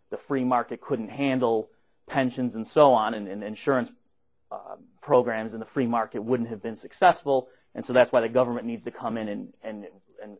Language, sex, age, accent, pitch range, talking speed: English, male, 30-49, American, 115-135 Hz, 195 wpm